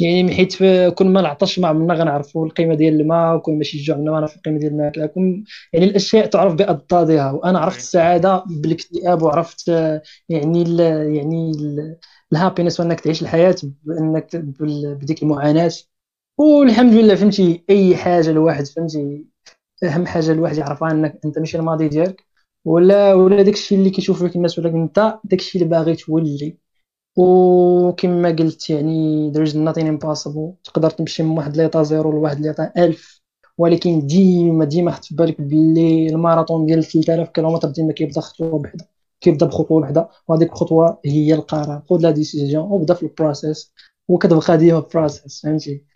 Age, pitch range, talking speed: 20-39, 160-185 Hz, 160 wpm